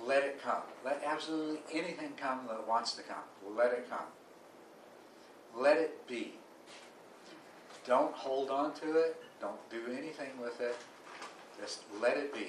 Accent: American